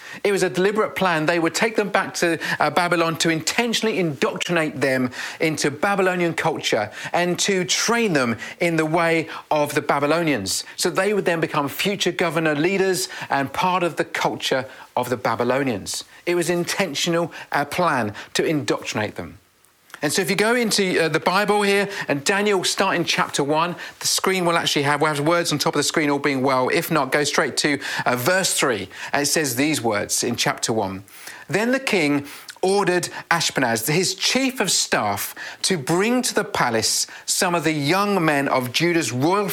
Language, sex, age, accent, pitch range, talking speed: English, male, 40-59, British, 145-190 Hz, 185 wpm